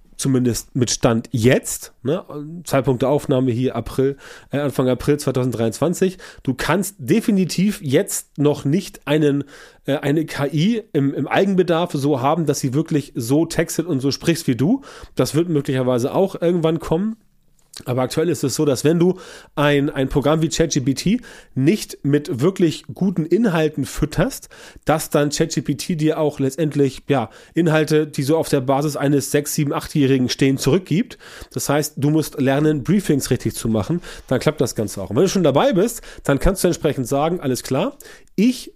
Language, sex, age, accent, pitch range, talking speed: German, male, 30-49, German, 135-165 Hz, 165 wpm